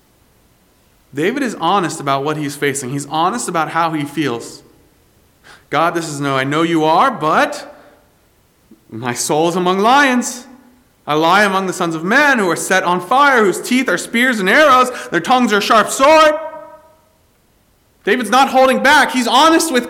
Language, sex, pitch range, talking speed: English, male, 165-255 Hz, 175 wpm